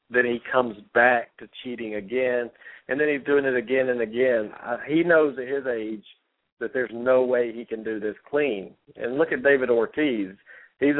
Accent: American